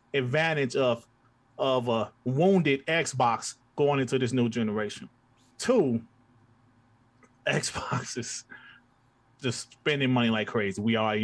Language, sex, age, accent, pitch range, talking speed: English, male, 30-49, American, 115-160 Hz, 110 wpm